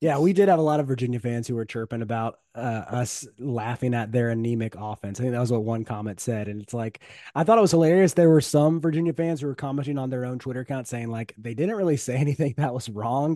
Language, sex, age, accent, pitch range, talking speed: English, male, 30-49, American, 120-150 Hz, 265 wpm